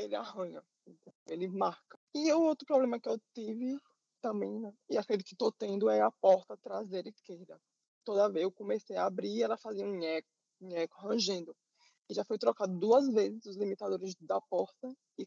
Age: 20-39